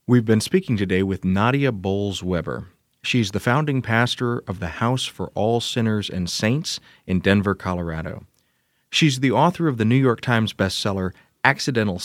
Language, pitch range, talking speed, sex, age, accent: English, 95-120 Hz, 160 wpm, male, 40-59, American